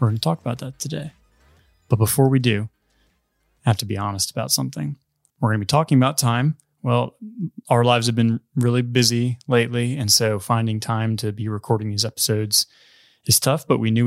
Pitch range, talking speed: 105-125 Hz, 200 wpm